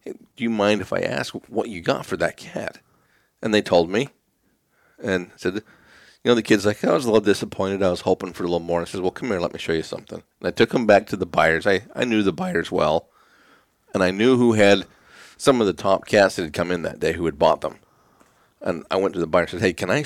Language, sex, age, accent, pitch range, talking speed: English, male, 40-59, American, 95-120 Hz, 270 wpm